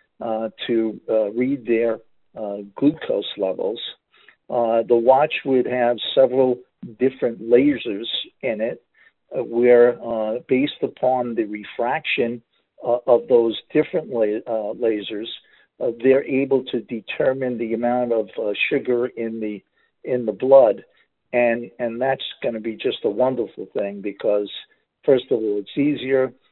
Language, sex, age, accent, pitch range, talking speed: English, male, 50-69, American, 115-130 Hz, 145 wpm